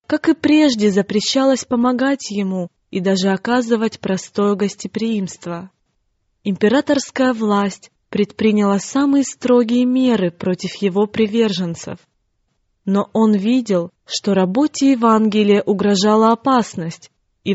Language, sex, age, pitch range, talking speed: Russian, female, 20-39, 195-245 Hz, 100 wpm